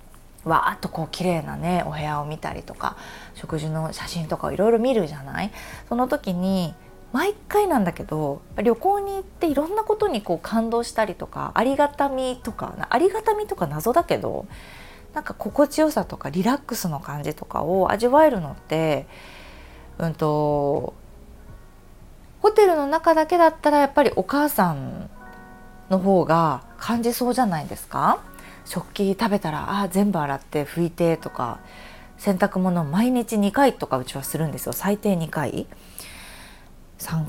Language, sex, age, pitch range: Japanese, female, 20-39, 155-255 Hz